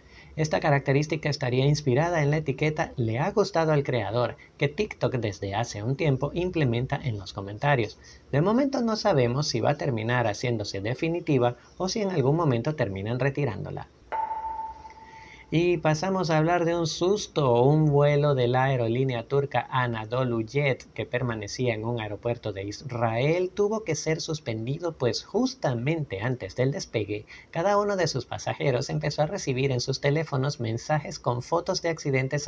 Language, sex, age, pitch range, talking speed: Spanish, male, 30-49, 120-155 Hz, 160 wpm